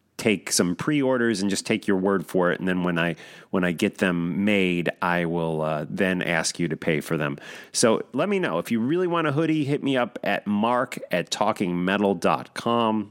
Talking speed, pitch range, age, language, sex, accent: 210 wpm, 95-125 Hz, 30-49, English, male, American